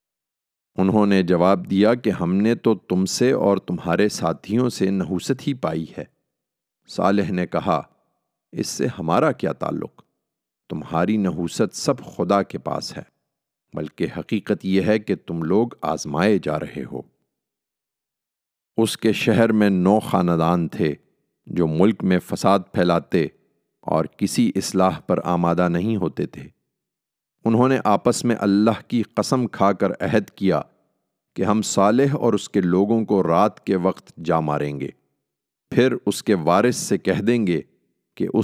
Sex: male